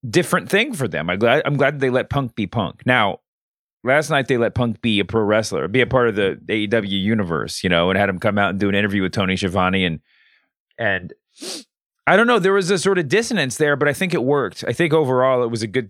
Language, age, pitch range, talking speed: English, 30-49, 105-135 Hz, 255 wpm